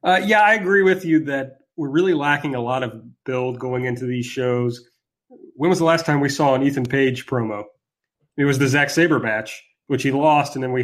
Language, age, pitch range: English, 30-49, 130-155 Hz